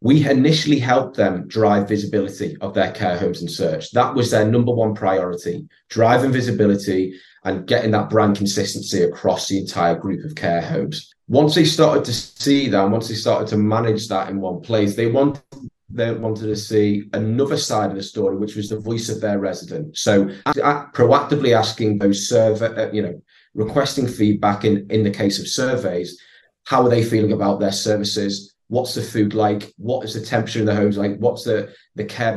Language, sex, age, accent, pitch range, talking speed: English, male, 30-49, British, 100-120 Hz, 195 wpm